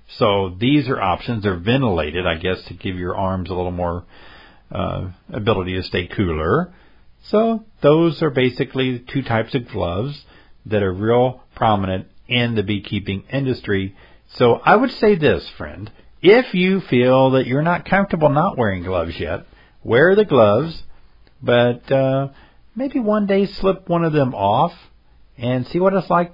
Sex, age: male, 50-69